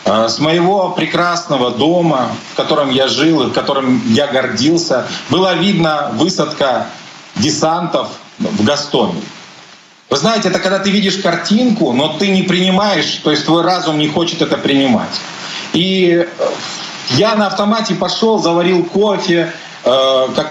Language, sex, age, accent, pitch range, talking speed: Ukrainian, male, 40-59, native, 145-185 Hz, 135 wpm